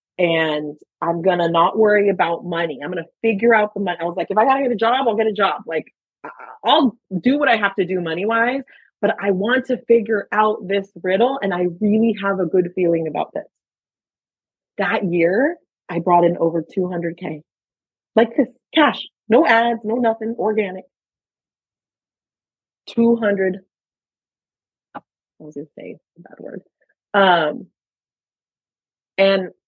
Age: 30-49